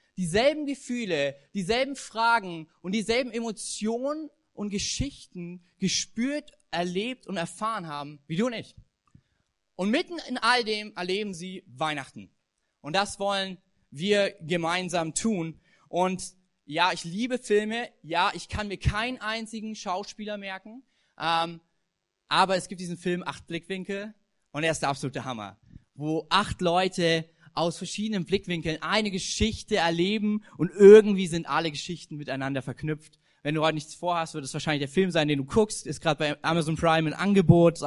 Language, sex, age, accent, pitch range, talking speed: German, male, 20-39, German, 160-215 Hz, 155 wpm